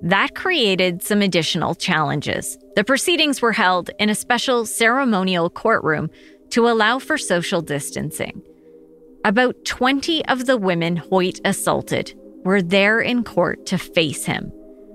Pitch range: 155-230 Hz